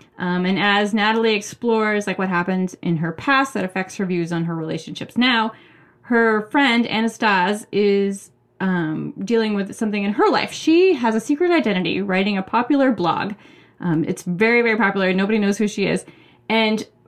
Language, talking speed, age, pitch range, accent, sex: English, 175 wpm, 20-39, 185-235 Hz, American, female